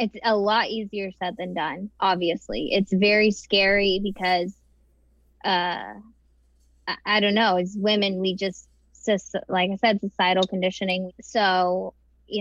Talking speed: 130 wpm